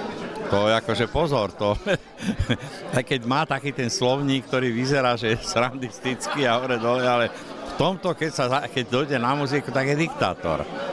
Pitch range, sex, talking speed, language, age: 110-145 Hz, male, 170 wpm, Slovak, 60-79